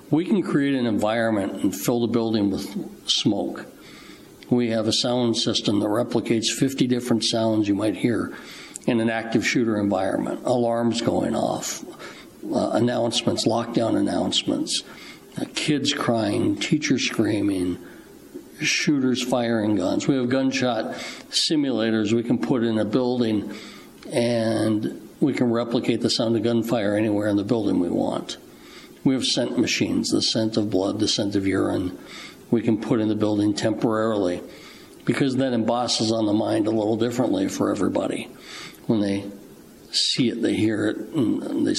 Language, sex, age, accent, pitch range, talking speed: English, male, 60-79, American, 110-125 Hz, 155 wpm